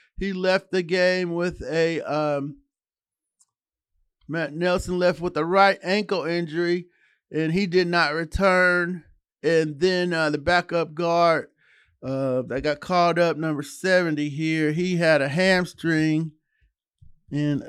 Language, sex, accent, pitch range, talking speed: English, male, American, 145-185 Hz, 130 wpm